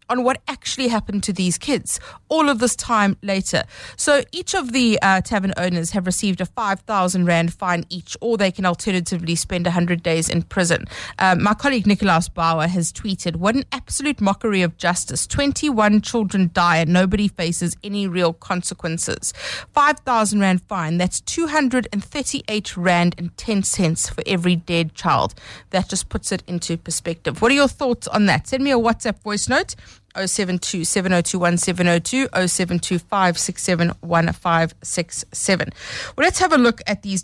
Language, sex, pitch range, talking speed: English, female, 180-235 Hz, 155 wpm